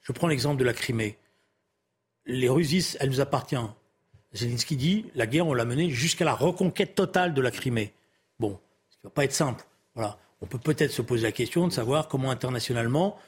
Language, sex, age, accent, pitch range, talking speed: French, male, 40-59, French, 120-160 Hz, 200 wpm